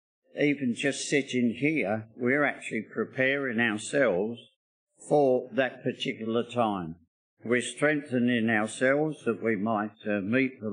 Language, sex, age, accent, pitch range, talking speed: English, male, 60-79, British, 110-130 Hz, 115 wpm